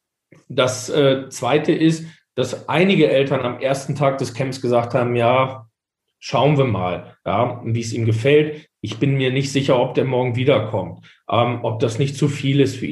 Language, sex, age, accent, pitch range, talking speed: German, male, 40-59, German, 130-150 Hz, 180 wpm